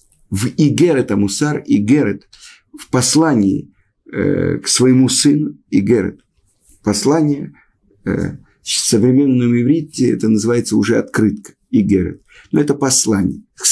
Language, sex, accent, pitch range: Russian, male, native, 125-170 Hz